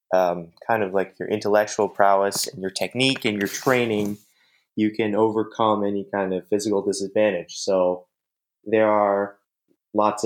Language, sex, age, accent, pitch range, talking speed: English, male, 20-39, American, 95-110 Hz, 145 wpm